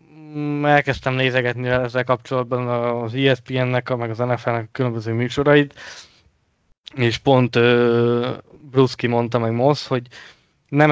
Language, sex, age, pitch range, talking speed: Hungarian, male, 20-39, 115-130 Hz, 105 wpm